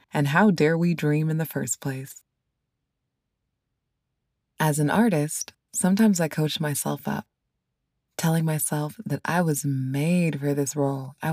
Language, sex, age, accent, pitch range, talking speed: English, female, 20-39, American, 120-155 Hz, 145 wpm